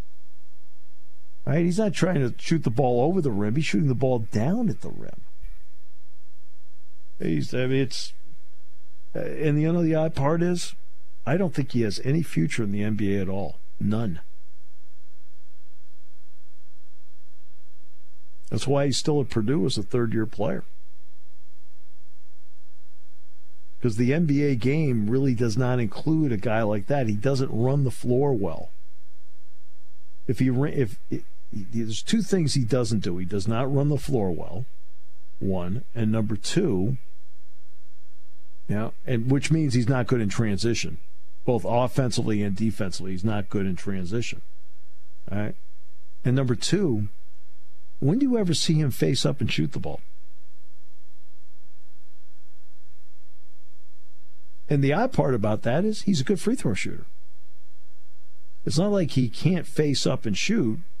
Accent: American